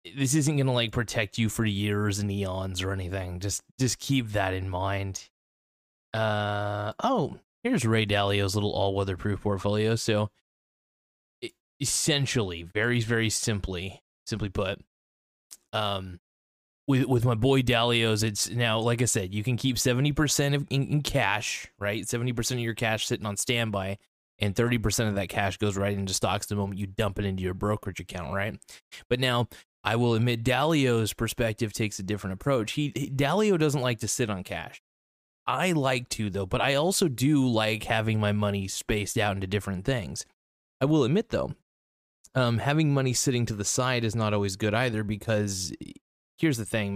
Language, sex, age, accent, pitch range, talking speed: English, male, 20-39, American, 100-125 Hz, 180 wpm